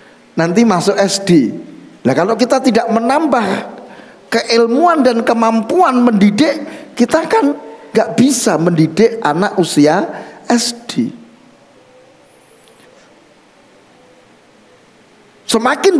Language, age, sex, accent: Indonesian, 50-69, male, native